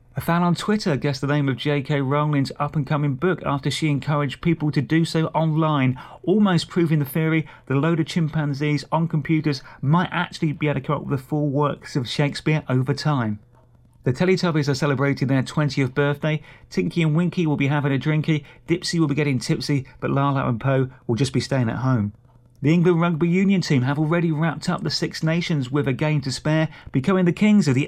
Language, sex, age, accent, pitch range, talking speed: English, male, 30-49, British, 135-160 Hz, 210 wpm